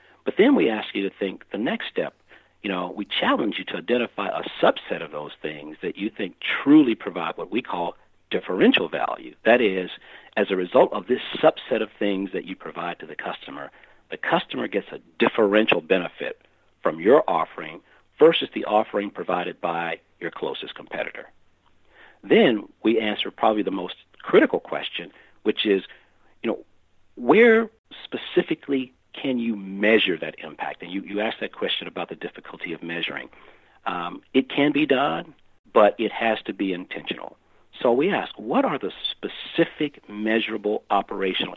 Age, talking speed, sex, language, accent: 50-69, 165 wpm, male, English, American